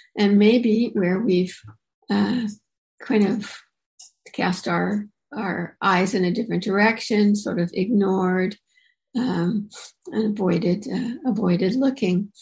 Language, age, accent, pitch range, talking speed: English, 60-79, American, 190-235 Hz, 115 wpm